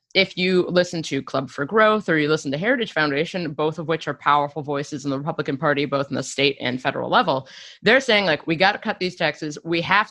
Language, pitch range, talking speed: English, 155-195 Hz, 245 wpm